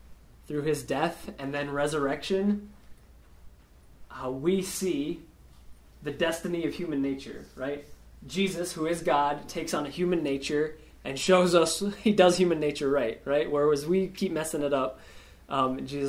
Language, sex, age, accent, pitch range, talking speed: English, male, 20-39, American, 110-160 Hz, 155 wpm